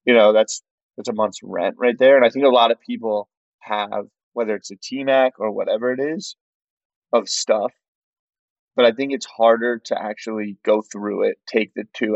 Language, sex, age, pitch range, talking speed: English, male, 20-39, 100-110 Hz, 195 wpm